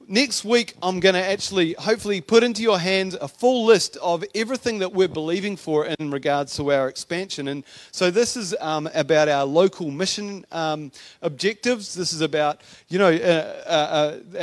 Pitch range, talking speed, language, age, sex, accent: 155-195 Hz, 180 wpm, English, 40-59, male, Australian